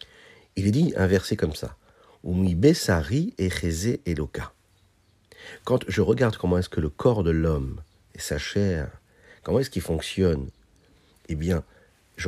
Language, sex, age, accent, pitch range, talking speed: French, male, 50-69, French, 80-105 Hz, 145 wpm